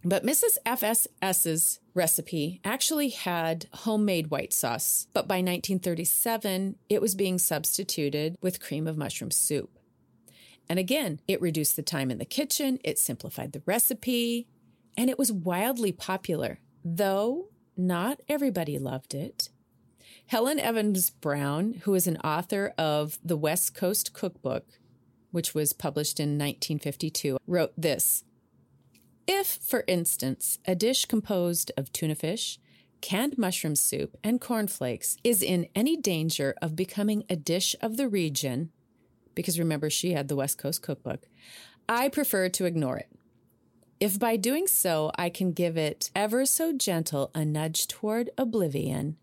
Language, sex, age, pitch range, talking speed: English, female, 30-49, 150-215 Hz, 140 wpm